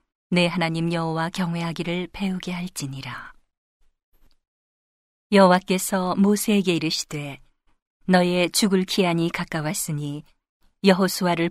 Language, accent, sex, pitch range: Korean, native, female, 165-195 Hz